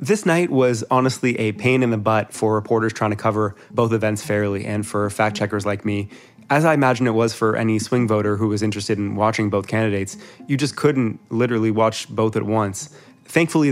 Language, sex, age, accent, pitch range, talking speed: English, male, 20-39, American, 105-130 Hz, 205 wpm